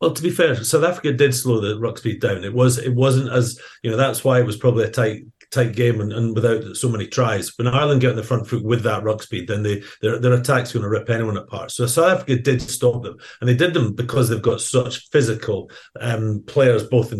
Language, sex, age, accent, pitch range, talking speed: English, male, 40-59, British, 115-135 Hz, 260 wpm